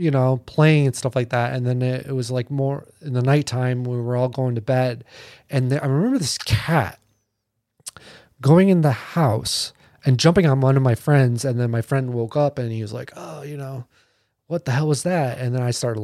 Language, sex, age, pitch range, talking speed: English, male, 20-39, 120-150 Hz, 230 wpm